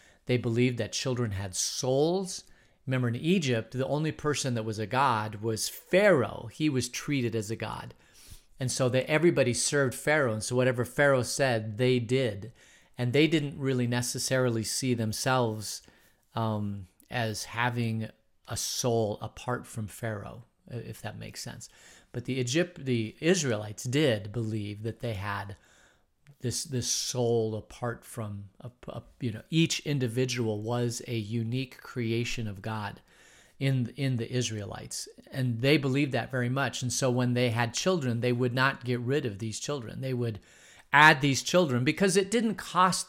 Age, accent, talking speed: 40-59, American, 160 wpm